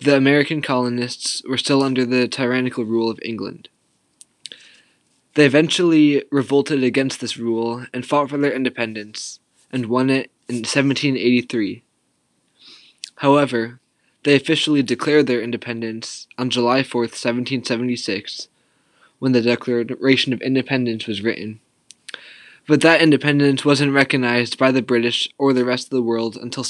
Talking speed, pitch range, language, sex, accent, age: 135 wpm, 120-140 Hz, English, male, American, 10-29